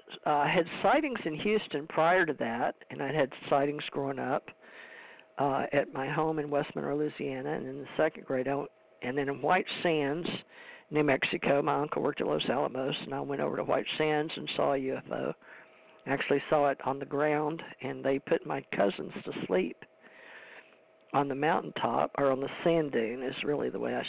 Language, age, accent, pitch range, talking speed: English, 50-69, American, 135-155 Hz, 200 wpm